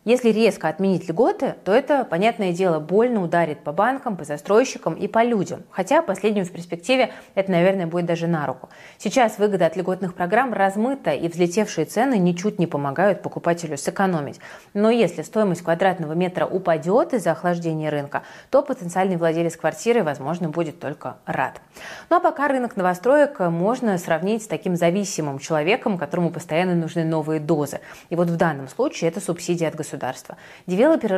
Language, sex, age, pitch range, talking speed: Russian, female, 30-49, 165-205 Hz, 160 wpm